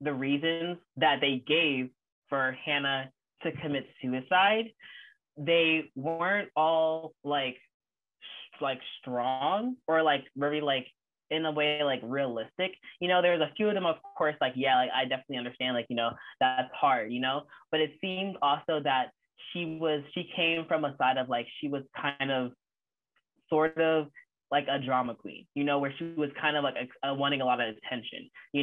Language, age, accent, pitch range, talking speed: English, 20-39, American, 130-160 Hz, 180 wpm